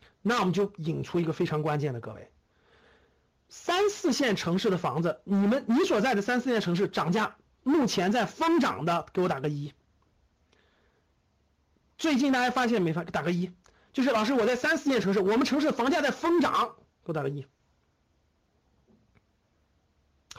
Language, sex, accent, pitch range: Chinese, male, native, 155-230 Hz